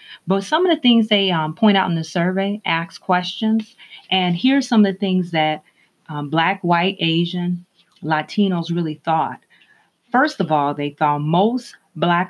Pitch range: 155-190 Hz